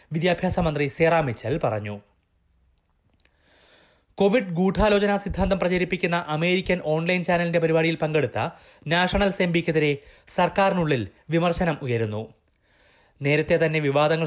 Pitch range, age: 125-175 Hz, 30-49